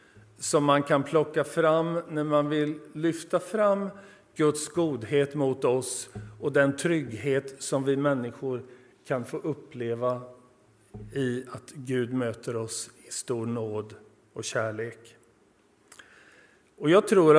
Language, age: Swedish, 50-69